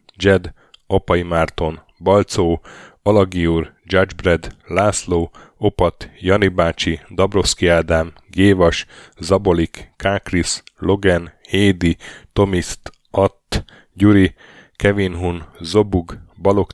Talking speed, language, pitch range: 85 wpm, Hungarian, 85-100 Hz